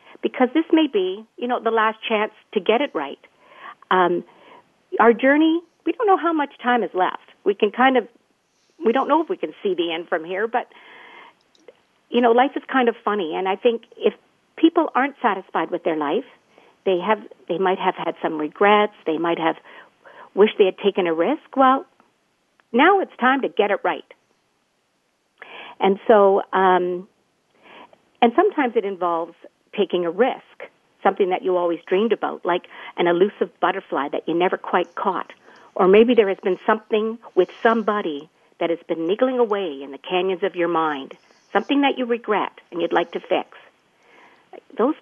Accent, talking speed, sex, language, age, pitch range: American, 180 wpm, female, English, 50-69, 180-260 Hz